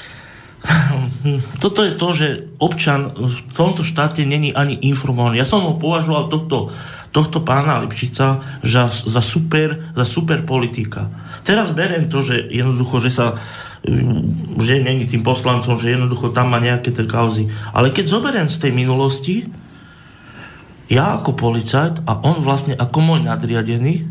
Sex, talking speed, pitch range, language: male, 140 wpm, 125-160 Hz, Slovak